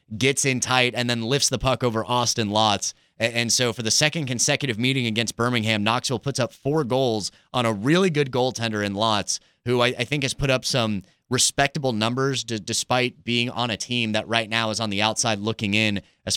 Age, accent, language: 30-49, American, English